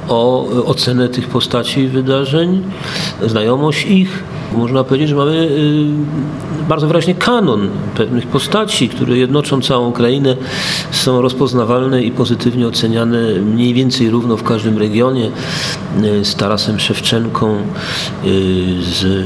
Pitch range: 105-145 Hz